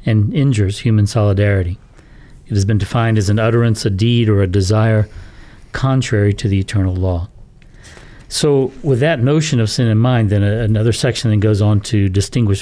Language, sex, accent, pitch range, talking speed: English, male, American, 100-120 Hz, 175 wpm